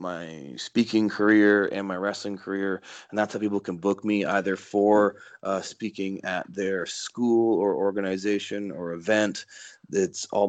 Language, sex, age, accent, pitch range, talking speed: English, male, 30-49, American, 95-110 Hz, 155 wpm